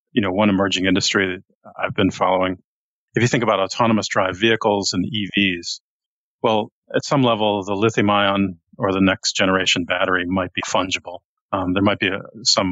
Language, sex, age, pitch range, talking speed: English, male, 40-59, 95-115 Hz, 185 wpm